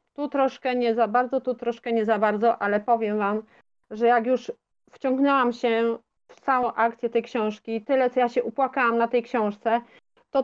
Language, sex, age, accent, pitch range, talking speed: Polish, female, 30-49, native, 220-255 Hz, 185 wpm